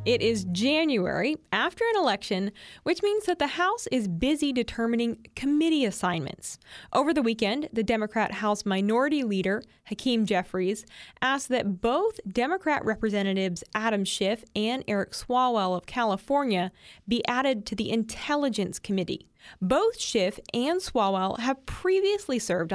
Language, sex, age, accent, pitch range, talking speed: English, female, 20-39, American, 195-265 Hz, 135 wpm